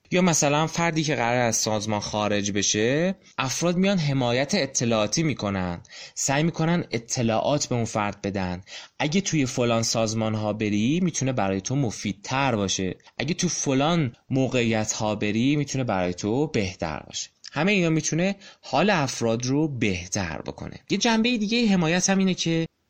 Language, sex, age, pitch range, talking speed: Persian, male, 20-39, 105-165 Hz, 150 wpm